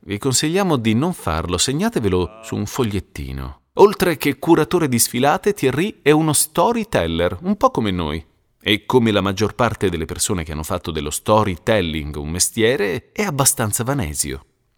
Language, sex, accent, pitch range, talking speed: Italian, male, native, 90-150 Hz, 160 wpm